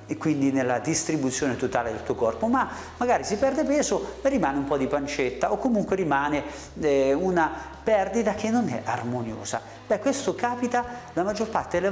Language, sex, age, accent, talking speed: Italian, male, 40-59, native, 175 wpm